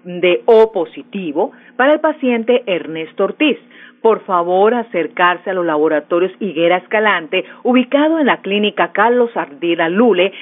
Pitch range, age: 190-265 Hz, 40-59